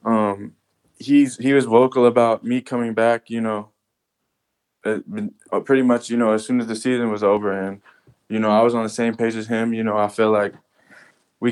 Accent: American